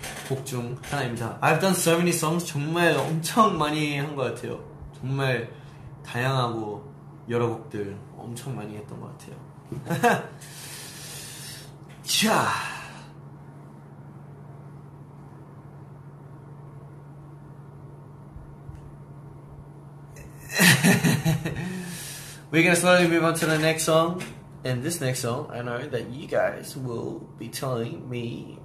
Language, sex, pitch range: Korean, male, 135-150 Hz